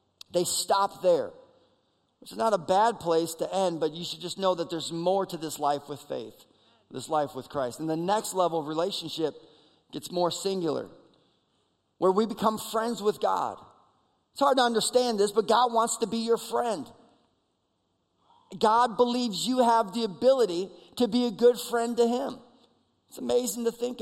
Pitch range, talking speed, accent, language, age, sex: 170-225 Hz, 175 wpm, American, English, 40-59, male